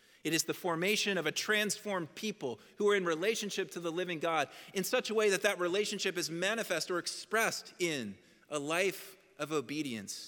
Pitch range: 175-220 Hz